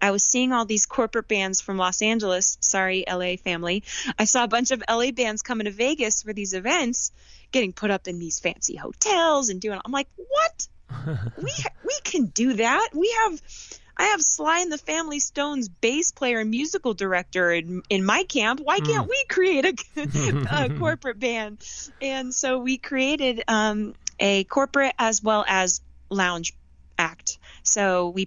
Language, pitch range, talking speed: English, 180-235 Hz, 175 wpm